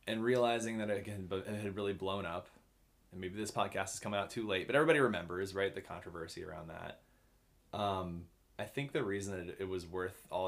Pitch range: 90-115 Hz